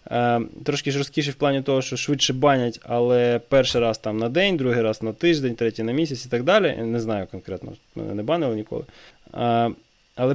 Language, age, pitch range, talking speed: Ukrainian, 20-39, 115-140 Hz, 185 wpm